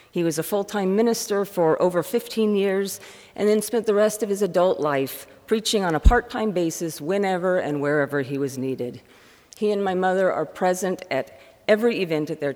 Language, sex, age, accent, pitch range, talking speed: English, female, 50-69, American, 135-205 Hz, 190 wpm